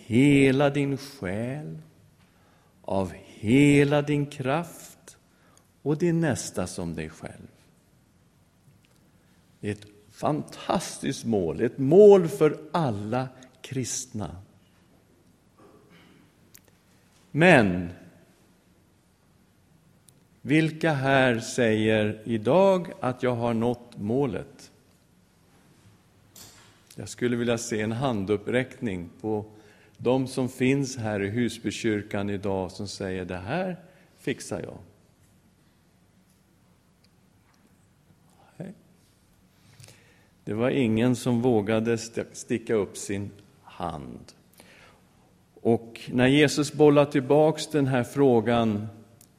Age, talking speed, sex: 50-69, 85 wpm, male